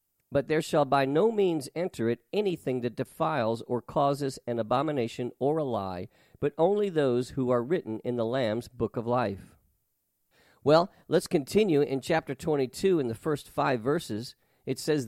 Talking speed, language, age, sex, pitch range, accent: 170 wpm, English, 50-69, male, 120-155 Hz, American